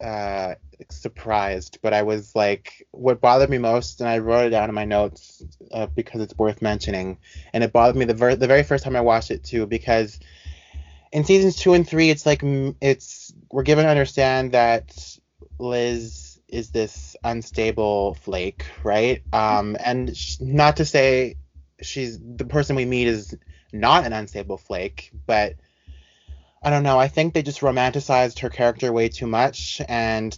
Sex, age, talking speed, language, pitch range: male, 20-39, 175 wpm, English, 95-130 Hz